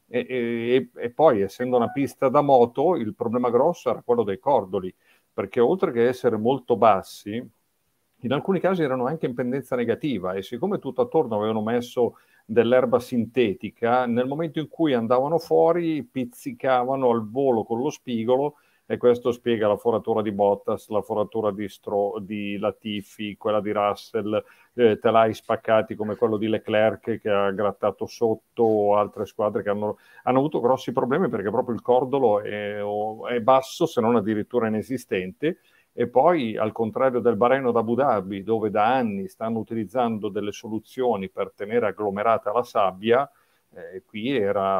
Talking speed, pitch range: 160 wpm, 105-125 Hz